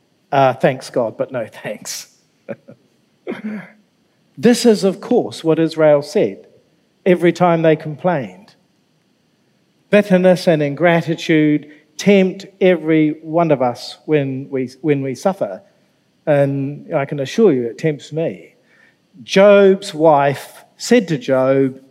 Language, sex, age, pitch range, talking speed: English, male, 50-69, 145-185 Hz, 115 wpm